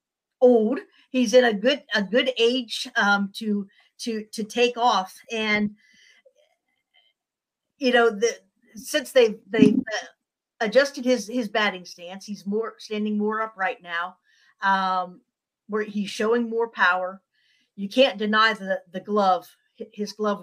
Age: 50-69